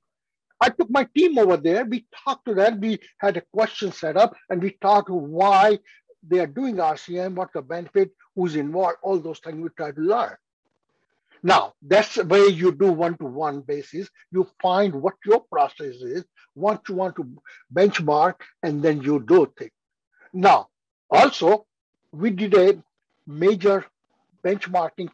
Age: 60-79